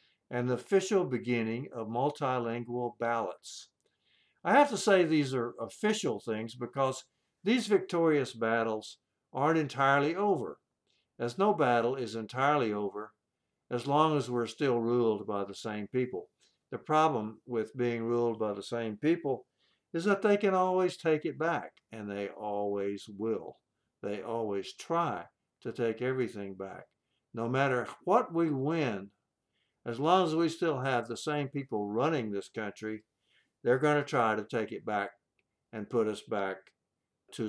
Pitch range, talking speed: 110-145 Hz, 155 wpm